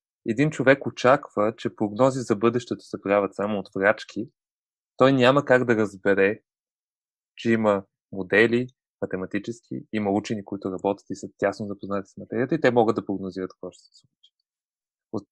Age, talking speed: 20-39, 160 wpm